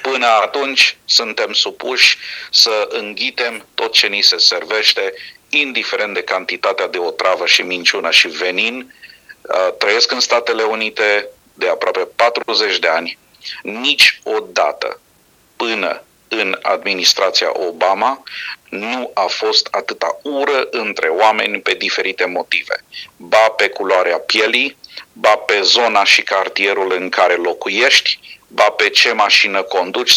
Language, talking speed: Romanian, 120 wpm